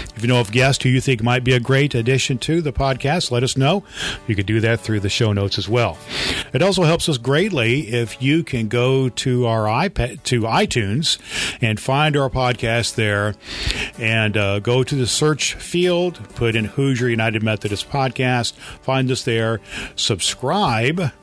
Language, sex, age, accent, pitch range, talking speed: English, male, 40-59, American, 110-140 Hz, 185 wpm